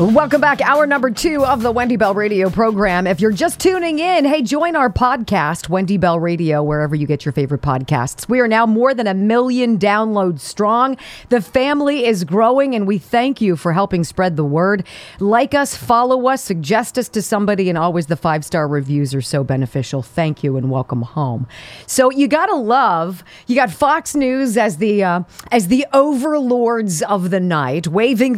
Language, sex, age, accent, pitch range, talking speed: English, female, 40-59, American, 180-265 Hz, 190 wpm